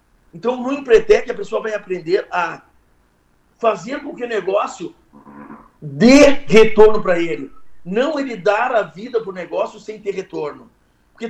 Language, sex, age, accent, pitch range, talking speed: Portuguese, male, 50-69, Brazilian, 165-240 Hz, 155 wpm